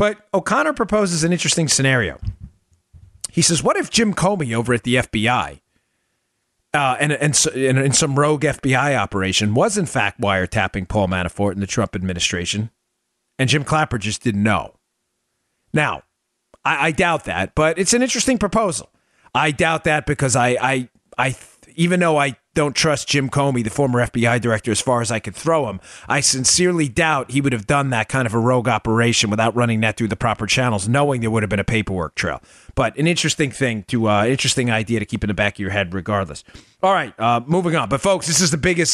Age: 40-59